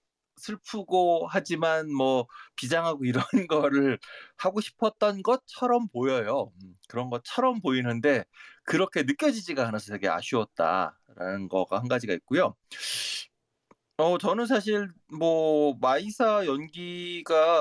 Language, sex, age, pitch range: Korean, male, 30-49, 125-175 Hz